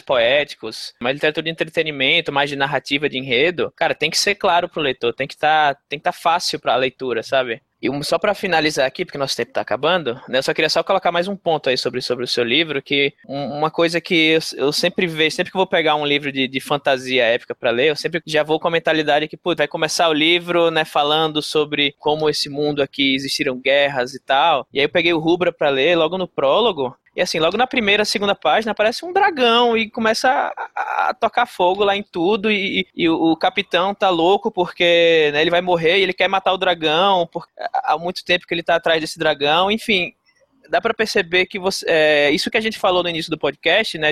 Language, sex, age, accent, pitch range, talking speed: Portuguese, male, 20-39, Brazilian, 150-215 Hz, 235 wpm